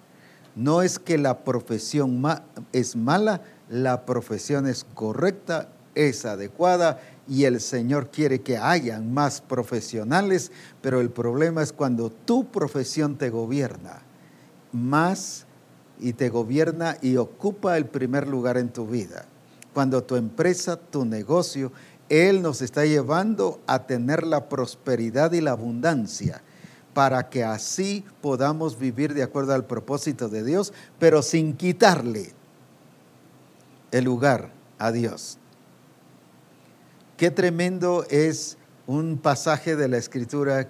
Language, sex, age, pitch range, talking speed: English, male, 50-69, 125-160 Hz, 125 wpm